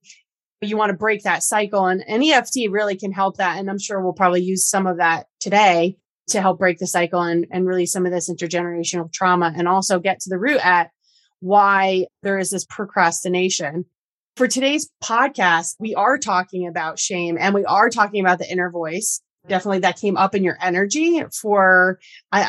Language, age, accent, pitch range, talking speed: English, 30-49, American, 180-210 Hz, 195 wpm